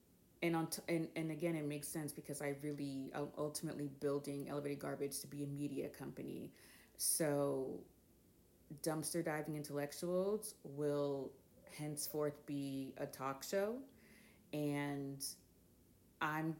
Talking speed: 125 wpm